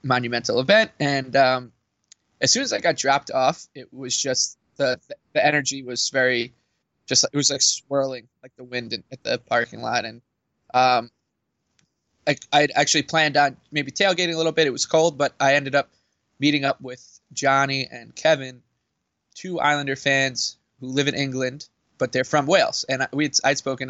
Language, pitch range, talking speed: English, 125-145 Hz, 175 wpm